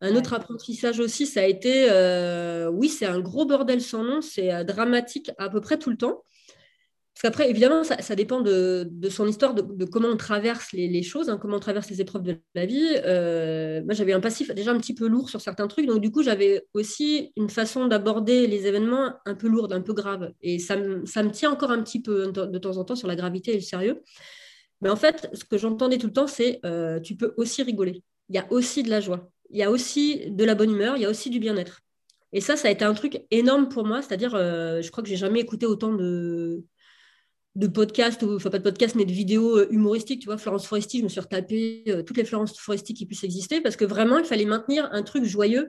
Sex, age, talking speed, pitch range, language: female, 30-49, 250 wpm, 195-240 Hz, French